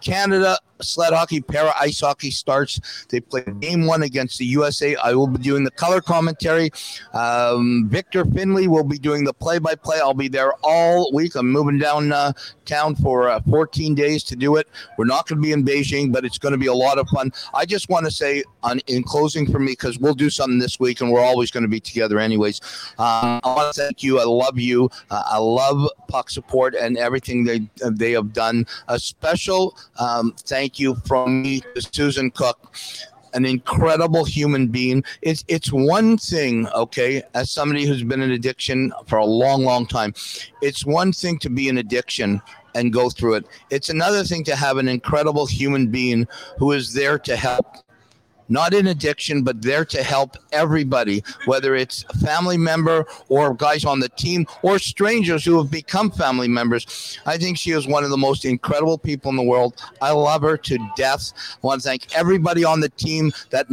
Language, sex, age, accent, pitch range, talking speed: English, male, 50-69, American, 125-155 Hz, 200 wpm